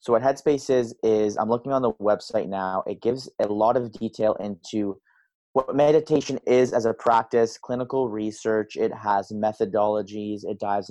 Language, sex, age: English, male, 30-49